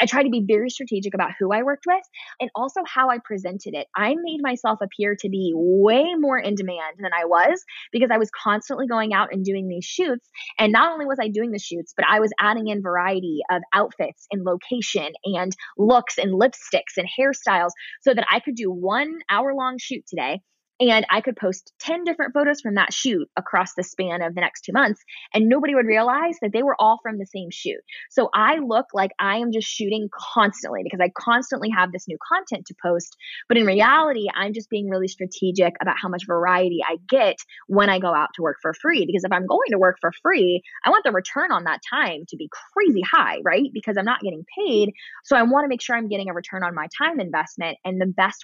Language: English